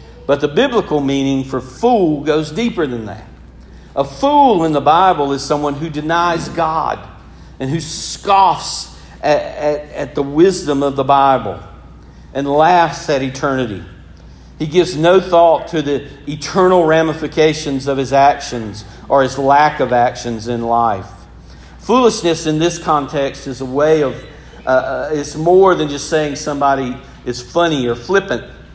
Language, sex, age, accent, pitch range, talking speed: English, male, 50-69, American, 125-165 Hz, 150 wpm